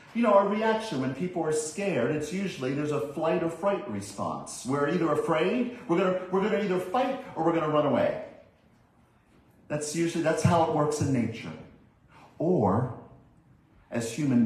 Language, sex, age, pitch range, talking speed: English, male, 50-69, 115-155 Hz, 175 wpm